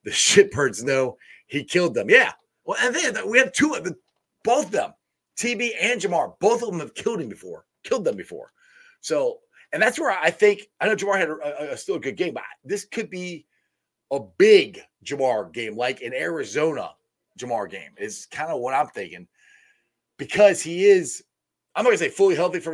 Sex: male